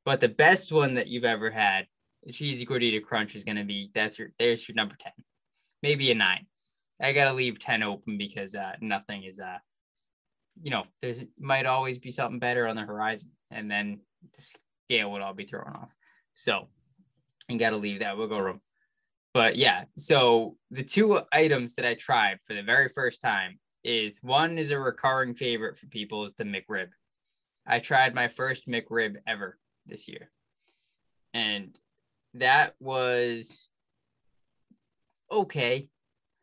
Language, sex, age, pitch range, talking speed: English, male, 10-29, 110-145 Hz, 165 wpm